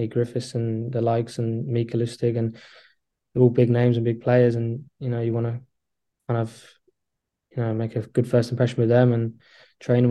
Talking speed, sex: 200 wpm, male